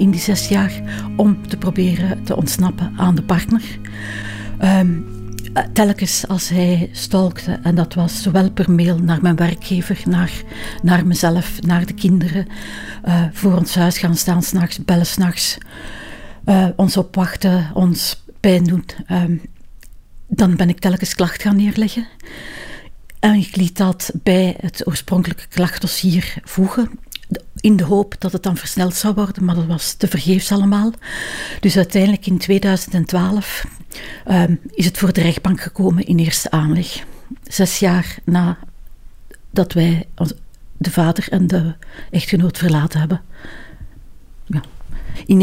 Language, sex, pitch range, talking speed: Dutch, female, 170-190 Hz, 135 wpm